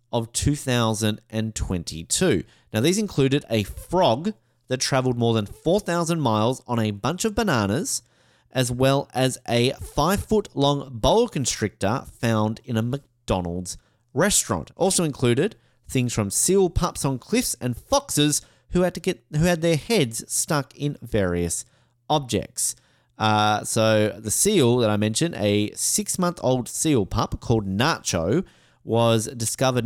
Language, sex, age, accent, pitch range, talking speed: English, male, 30-49, Australian, 110-140 Hz, 135 wpm